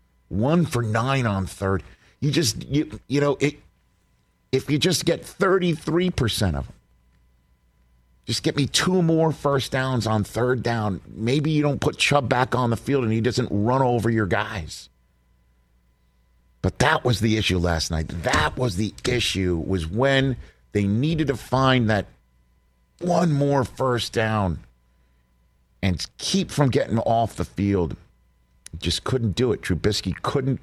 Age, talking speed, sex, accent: 50-69, 155 wpm, male, American